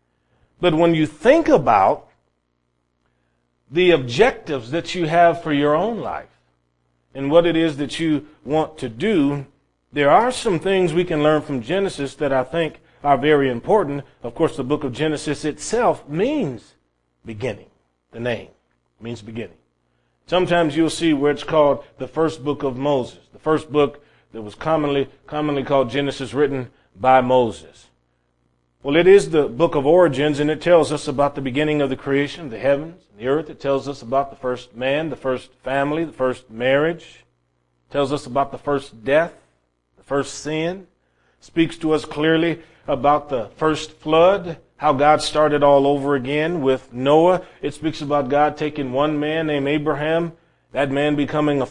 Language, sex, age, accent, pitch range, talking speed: English, male, 40-59, American, 125-155 Hz, 175 wpm